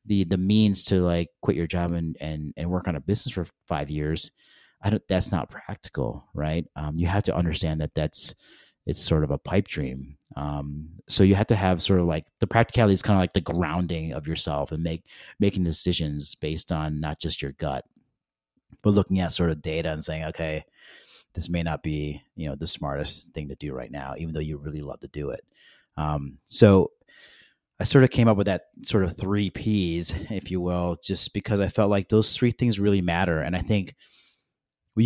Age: 30-49